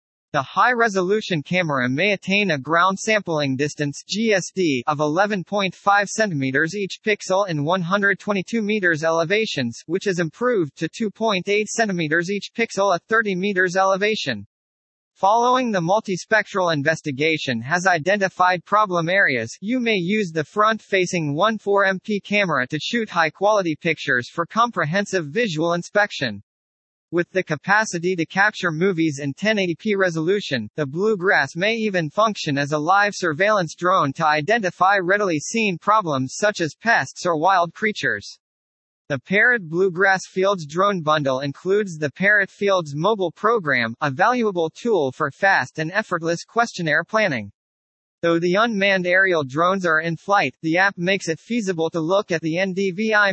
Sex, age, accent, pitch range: male, 40-59, American, 155-205 Hz